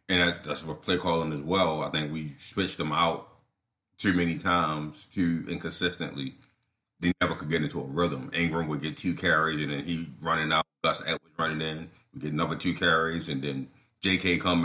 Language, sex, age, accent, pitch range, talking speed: English, male, 30-49, American, 80-105 Hz, 195 wpm